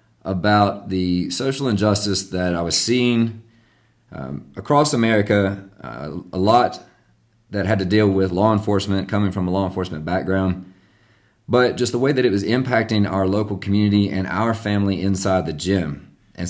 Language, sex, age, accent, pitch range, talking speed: English, male, 30-49, American, 95-110 Hz, 165 wpm